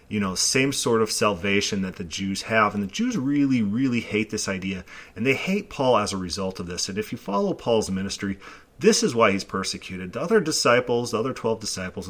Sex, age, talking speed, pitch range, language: male, 30-49, 225 wpm, 95-130 Hz, English